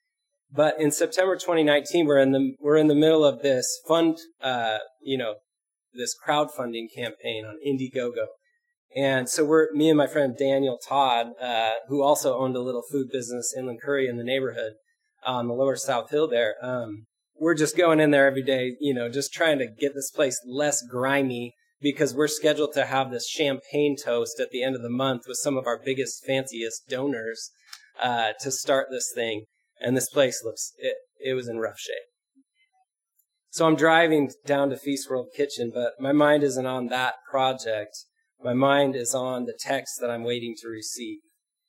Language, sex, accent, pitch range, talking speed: English, male, American, 125-155 Hz, 185 wpm